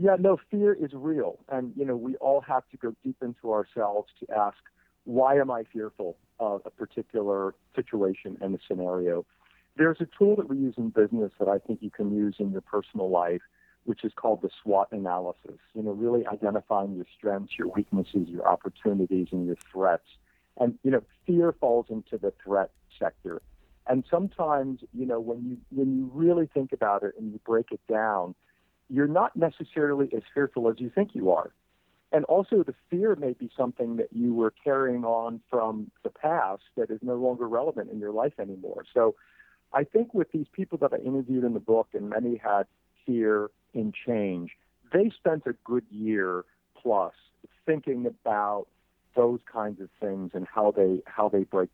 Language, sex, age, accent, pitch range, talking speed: English, male, 50-69, American, 105-135 Hz, 190 wpm